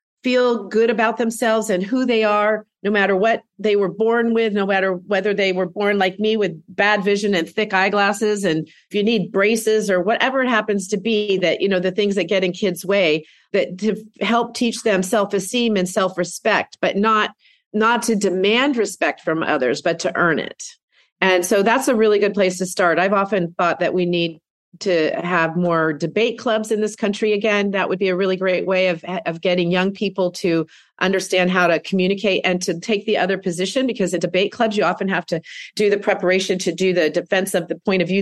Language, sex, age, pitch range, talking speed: English, female, 40-59, 180-210 Hz, 215 wpm